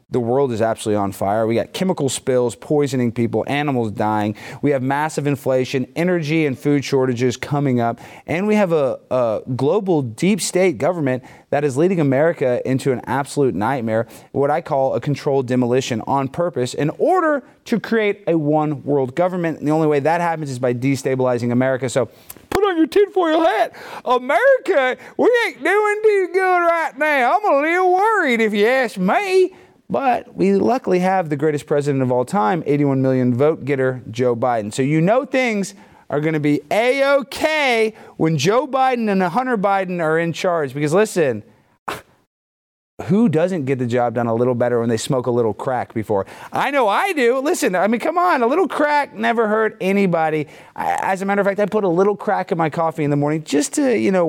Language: English